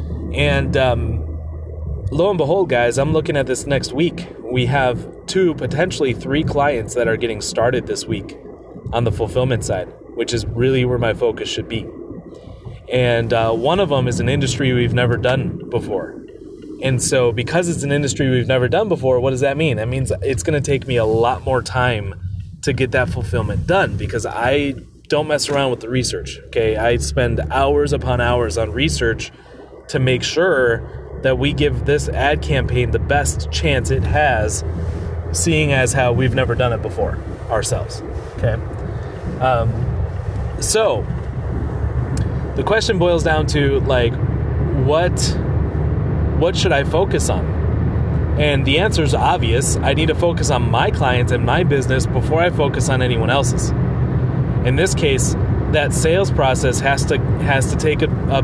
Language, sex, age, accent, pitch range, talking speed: English, male, 30-49, American, 110-140 Hz, 170 wpm